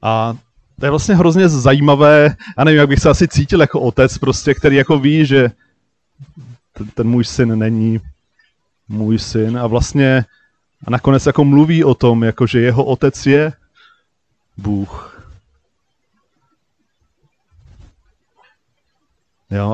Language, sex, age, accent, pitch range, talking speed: Czech, male, 30-49, native, 115-140 Hz, 130 wpm